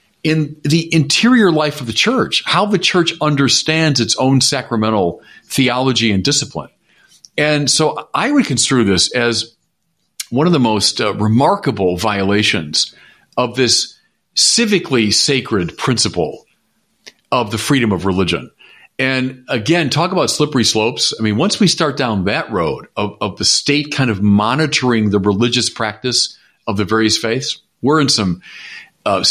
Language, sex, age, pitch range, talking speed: English, male, 40-59, 110-160 Hz, 150 wpm